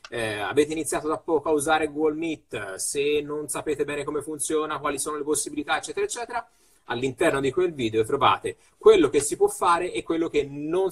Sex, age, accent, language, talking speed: male, 30-49, native, Italian, 190 wpm